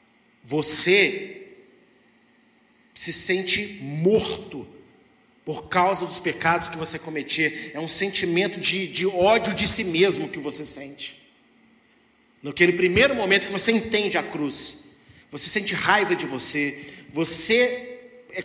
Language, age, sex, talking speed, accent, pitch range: Portuguese, 40-59, male, 125 wpm, Brazilian, 180-240 Hz